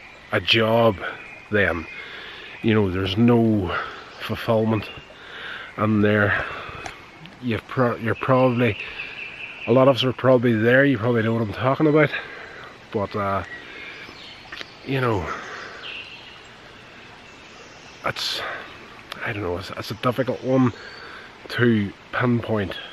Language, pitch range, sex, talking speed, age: English, 105-125 Hz, male, 115 wpm, 30-49